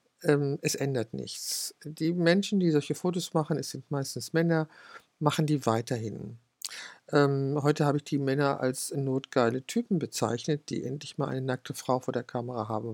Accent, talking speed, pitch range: German, 160 wpm, 135-160 Hz